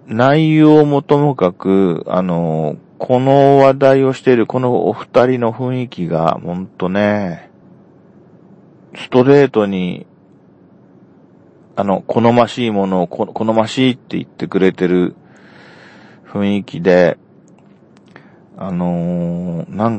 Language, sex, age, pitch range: Japanese, male, 40-59, 90-120 Hz